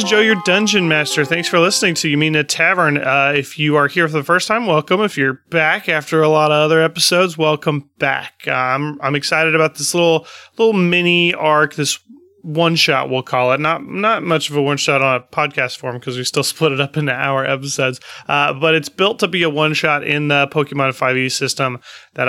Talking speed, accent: 230 wpm, American